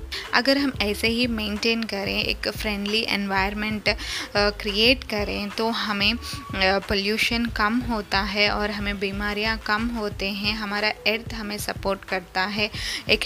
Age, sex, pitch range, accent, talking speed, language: 20-39, female, 205-240 Hz, native, 140 wpm, Hindi